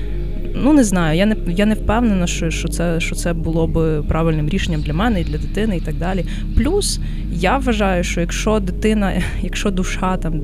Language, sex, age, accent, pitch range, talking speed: Ukrainian, female, 20-39, native, 160-195 Hz, 195 wpm